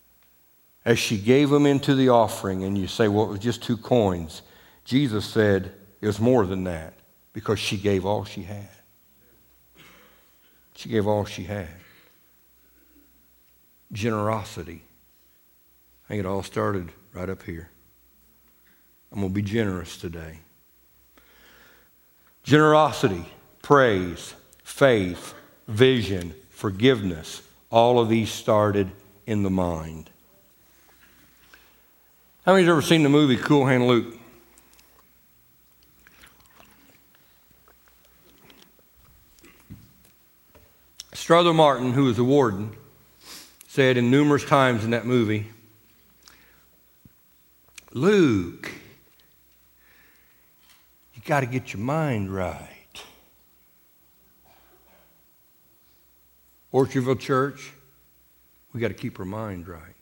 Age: 60-79